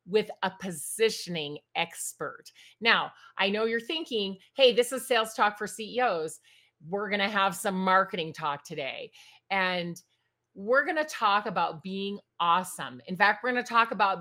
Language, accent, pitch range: English, American, 185-255 Hz